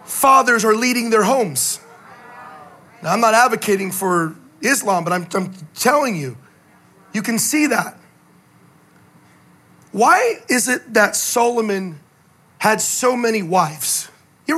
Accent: American